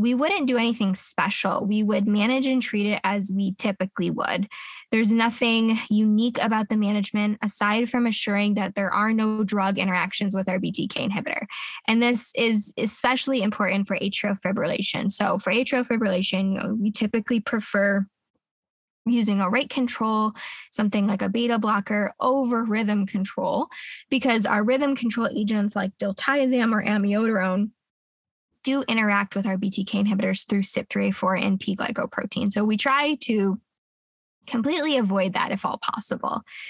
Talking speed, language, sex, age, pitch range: 145 wpm, English, female, 10-29, 200-235 Hz